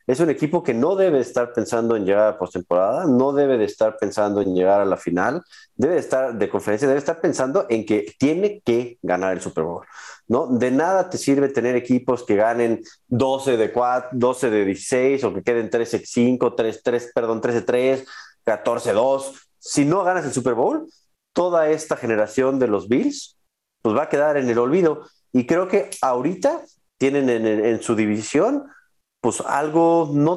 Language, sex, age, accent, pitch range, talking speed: Spanish, male, 40-59, Mexican, 120-155 Hz, 200 wpm